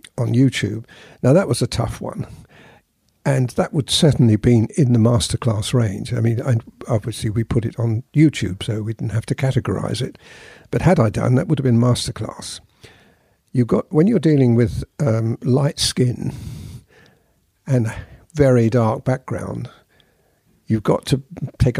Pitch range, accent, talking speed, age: 110-135 Hz, British, 160 wpm, 60-79